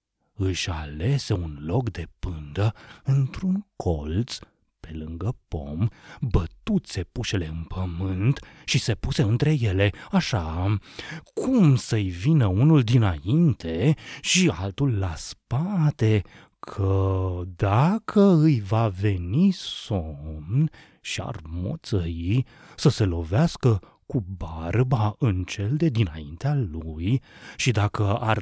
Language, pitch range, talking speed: Romanian, 90-130 Hz, 110 wpm